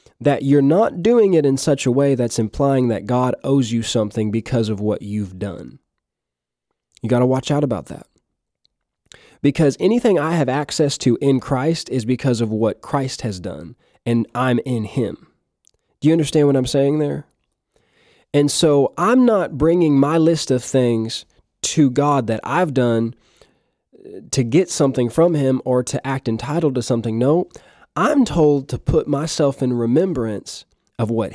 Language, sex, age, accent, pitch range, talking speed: English, male, 20-39, American, 120-155 Hz, 170 wpm